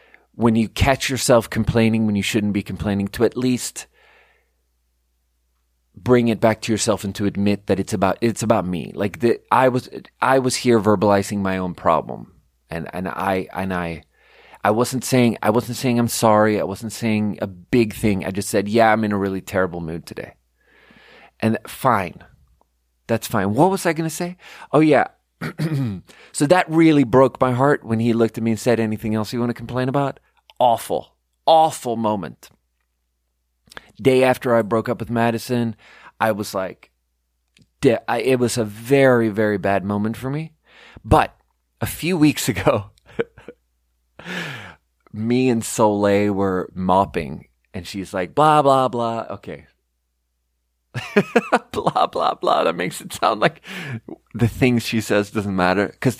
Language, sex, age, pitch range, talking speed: English, male, 30-49, 95-125 Hz, 165 wpm